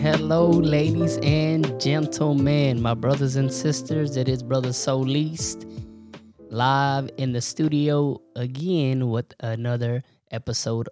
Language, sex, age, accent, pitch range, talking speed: English, male, 10-29, American, 115-135 Hz, 110 wpm